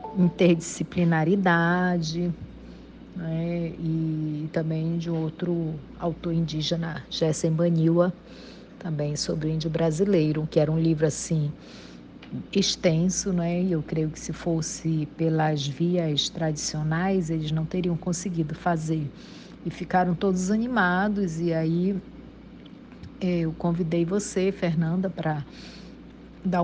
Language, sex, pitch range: Portuguese, female, 160-180 Hz